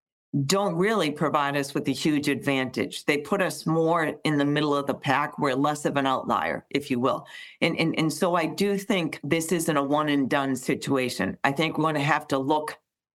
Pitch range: 140-165 Hz